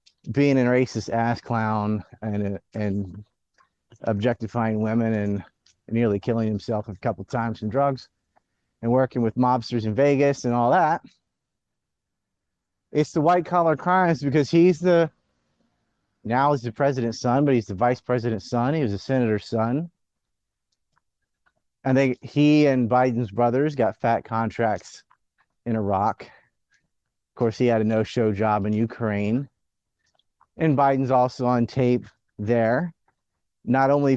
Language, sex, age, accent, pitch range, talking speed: English, male, 30-49, American, 110-135 Hz, 140 wpm